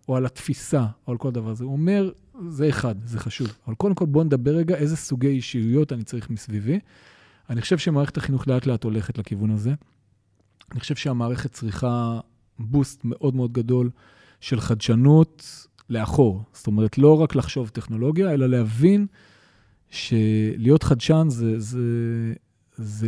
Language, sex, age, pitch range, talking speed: Hebrew, male, 40-59, 115-155 Hz, 155 wpm